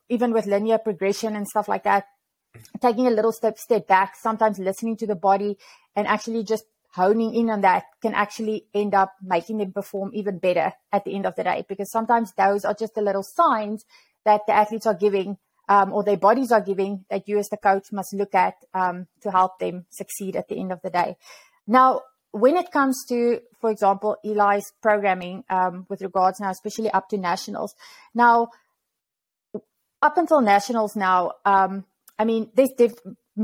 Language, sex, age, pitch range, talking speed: English, female, 30-49, 195-225 Hz, 190 wpm